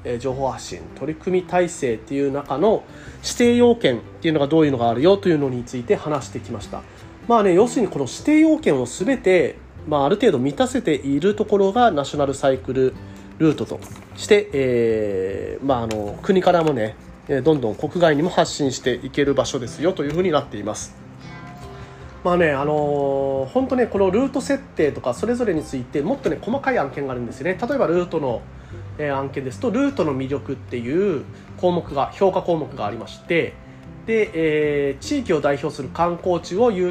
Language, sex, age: Japanese, male, 30-49